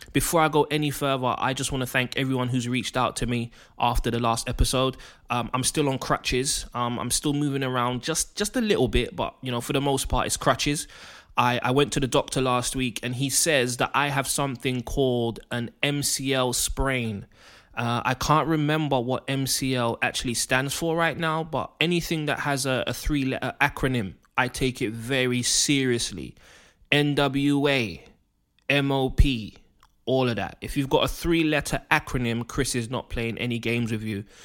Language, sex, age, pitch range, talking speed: English, male, 20-39, 125-150 Hz, 185 wpm